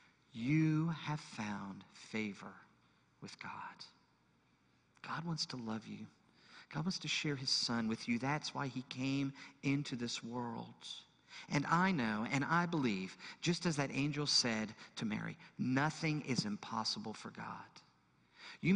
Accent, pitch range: American, 130-190 Hz